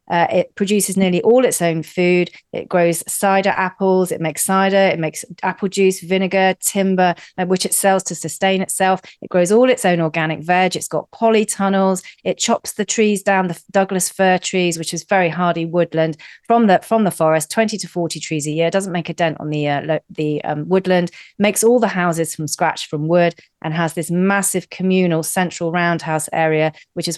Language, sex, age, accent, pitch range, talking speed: English, female, 40-59, British, 165-195 Hz, 195 wpm